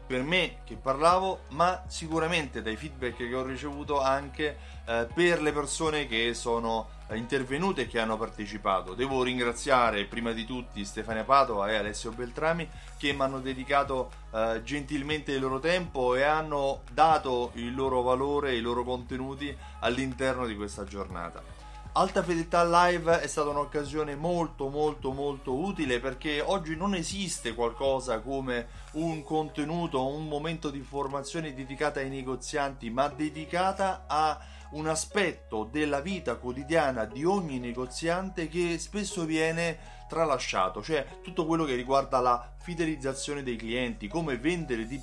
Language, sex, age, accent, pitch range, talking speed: Italian, male, 30-49, native, 120-155 Hz, 145 wpm